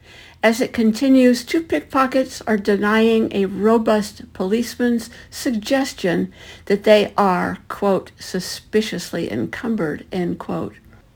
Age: 60-79